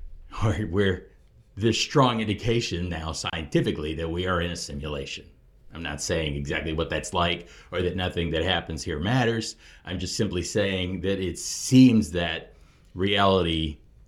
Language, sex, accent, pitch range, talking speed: English, male, American, 80-110 Hz, 150 wpm